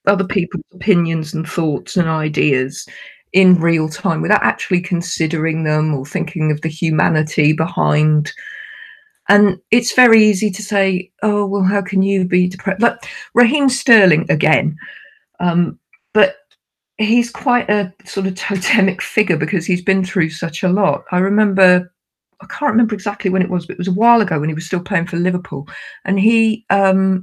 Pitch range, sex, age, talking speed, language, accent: 180-215 Hz, female, 50-69, 170 wpm, English, British